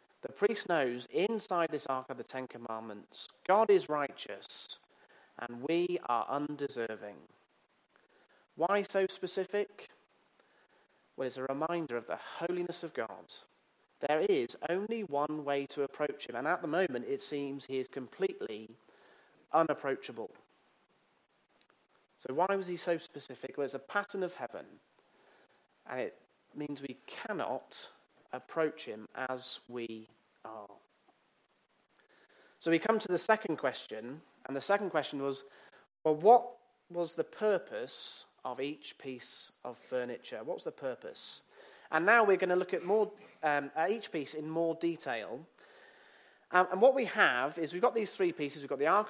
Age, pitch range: 30-49, 140-205 Hz